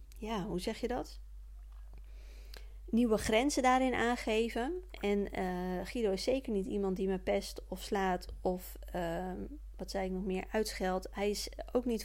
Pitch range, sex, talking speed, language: 190-240 Hz, female, 165 wpm, Dutch